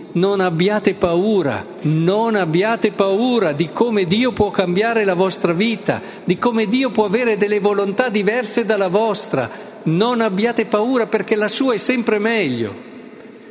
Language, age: Italian, 50-69